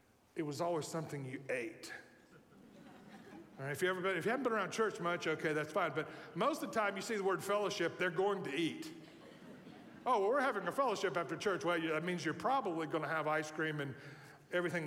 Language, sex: English, male